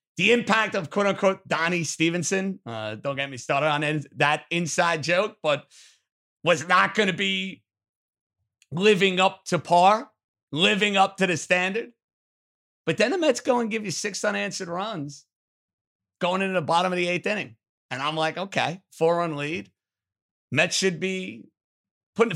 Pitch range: 145-220 Hz